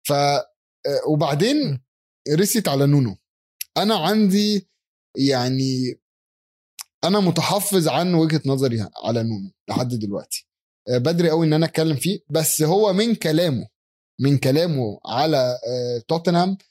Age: 20-39